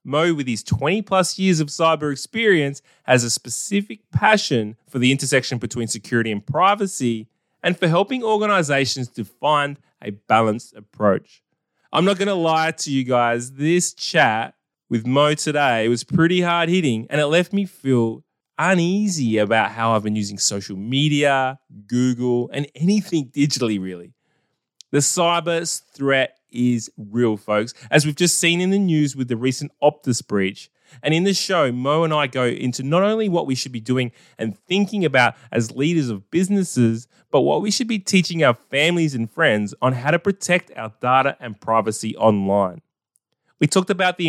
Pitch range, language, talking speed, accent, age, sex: 115-170 Hz, English, 175 wpm, Australian, 20-39, male